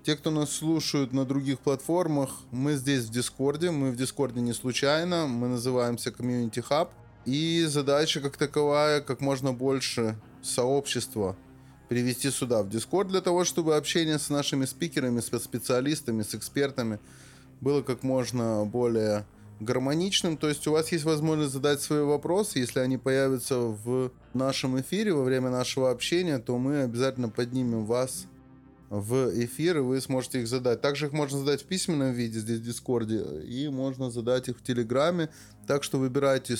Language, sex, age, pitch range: Russian, male, 20-39, 120-145 Hz